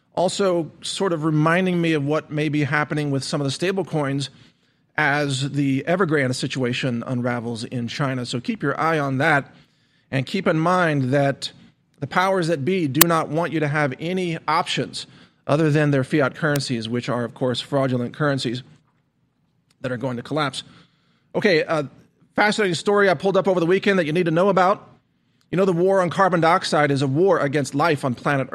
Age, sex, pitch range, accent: 40-59, male, 135-175 Hz, American